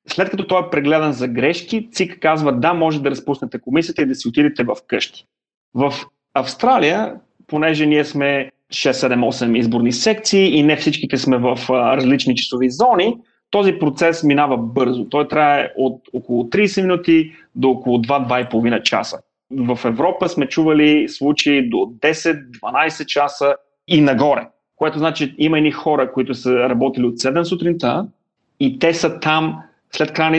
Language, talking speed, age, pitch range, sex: Bulgarian, 155 wpm, 30-49, 130-165 Hz, male